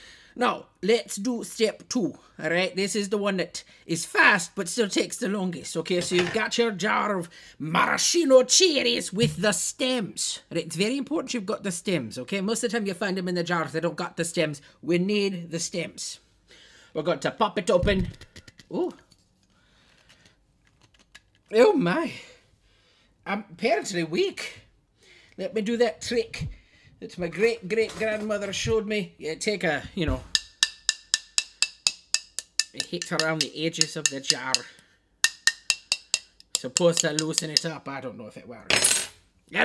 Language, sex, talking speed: English, male, 160 wpm